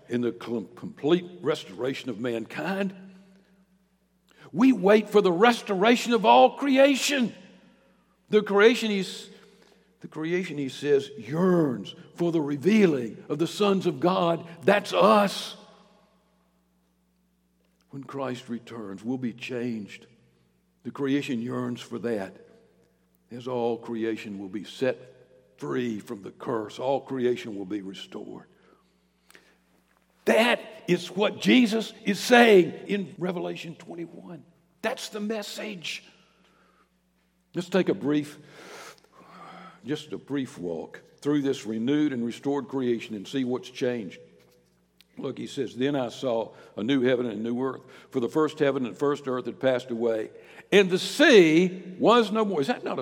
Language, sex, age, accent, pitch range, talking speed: English, male, 60-79, American, 120-200 Hz, 135 wpm